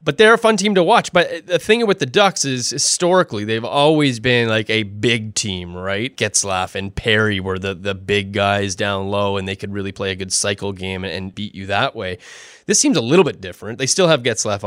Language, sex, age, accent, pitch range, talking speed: English, male, 20-39, American, 105-135 Hz, 235 wpm